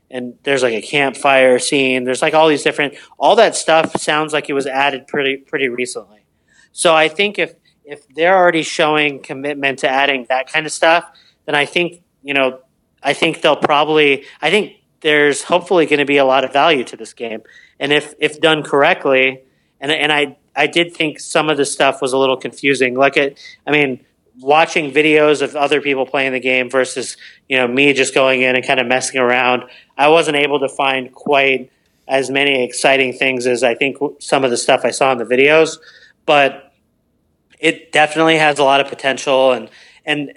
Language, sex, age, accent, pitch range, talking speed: English, male, 40-59, American, 130-150 Hz, 200 wpm